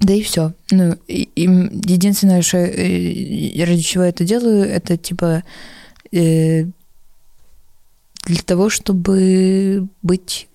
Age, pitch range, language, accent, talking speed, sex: 20-39, 150-185 Hz, Russian, native, 120 wpm, female